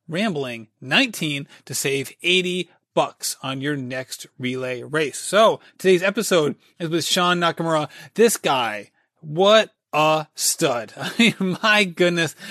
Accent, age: American, 30-49